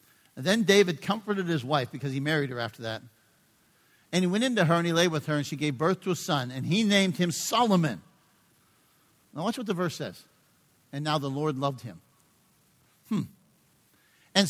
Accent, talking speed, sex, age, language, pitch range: American, 200 wpm, male, 60-79, English, 145-190 Hz